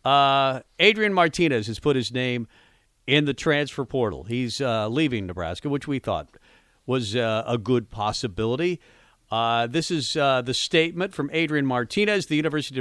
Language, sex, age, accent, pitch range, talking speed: English, male, 50-69, American, 115-155 Hz, 160 wpm